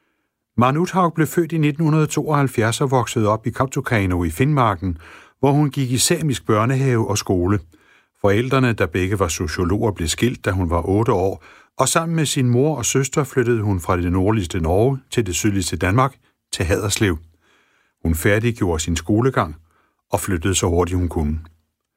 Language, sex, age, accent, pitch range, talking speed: Danish, male, 60-79, native, 95-145 Hz, 170 wpm